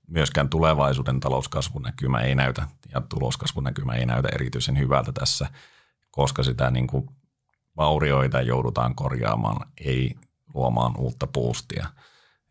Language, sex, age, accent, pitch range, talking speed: Finnish, male, 40-59, native, 65-75 Hz, 100 wpm